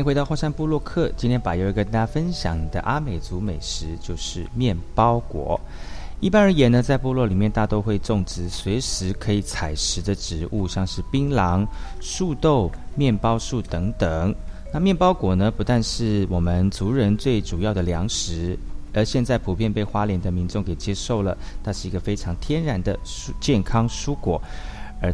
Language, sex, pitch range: Chinese, male, 90-125 Hz